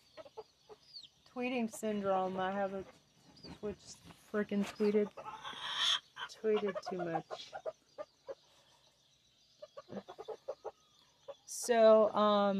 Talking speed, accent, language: 55 wpm, American, English